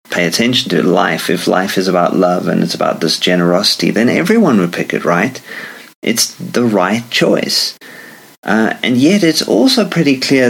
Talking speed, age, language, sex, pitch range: 170 wpm, 30-49, English, male, 100-130 Hz